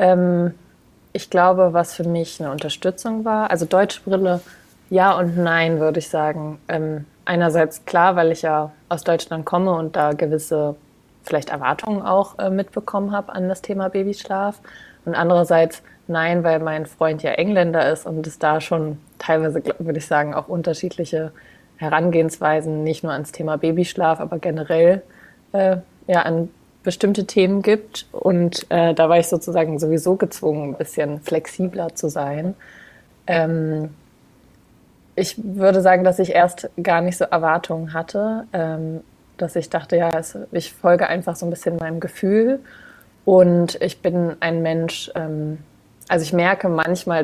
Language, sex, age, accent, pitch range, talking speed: German, female, 20-39, German, 160-185 Hz, 145 wpm